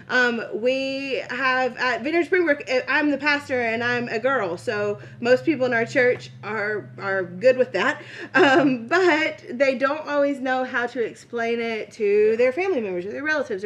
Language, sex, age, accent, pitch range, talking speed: English, female, 30-49, American, 225-285 Hz, 180 wpm